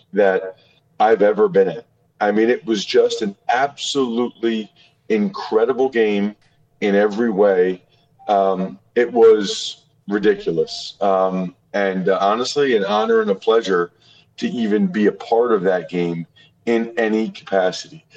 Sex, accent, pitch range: male, American, 120-195 Hz